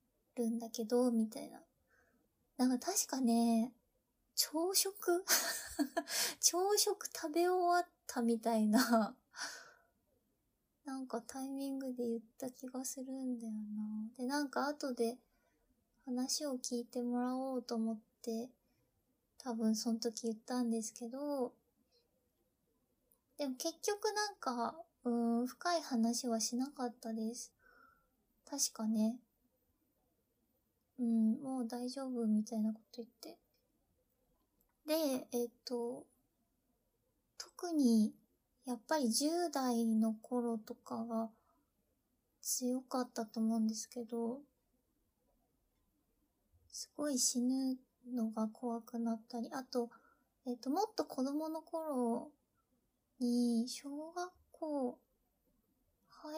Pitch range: 230-285 Hz